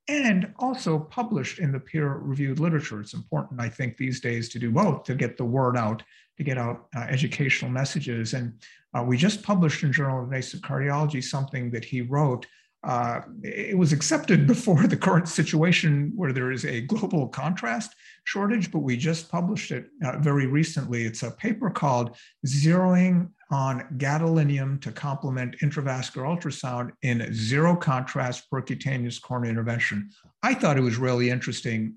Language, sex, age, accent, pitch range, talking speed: English, male, 50-69, American, 125-165 Hz, 165 wpm